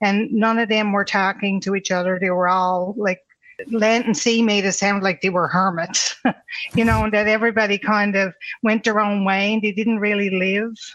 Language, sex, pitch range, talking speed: English, female, 185-210 Hz, 215 wpm